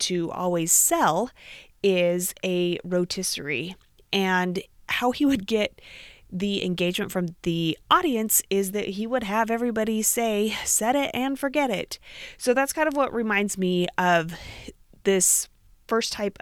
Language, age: English, 30-49